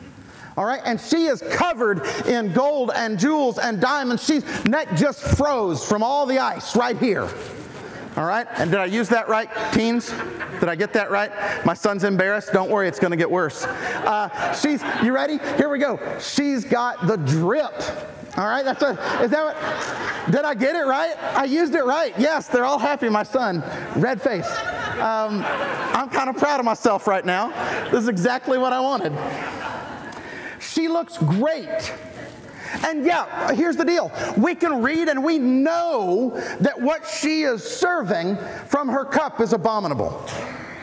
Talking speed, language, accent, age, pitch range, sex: 170 wpm, English, American, 40-59, 225-310 Hz, male